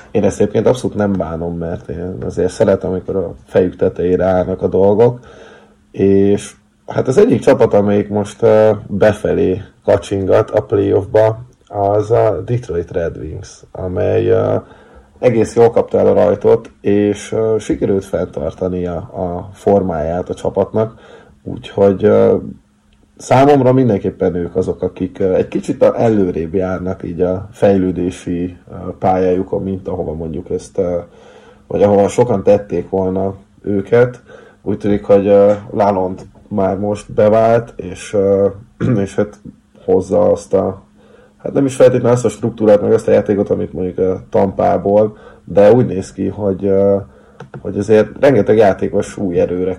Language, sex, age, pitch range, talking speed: Hungarian, male, 30-49, 95-110 Hz, 130 wpm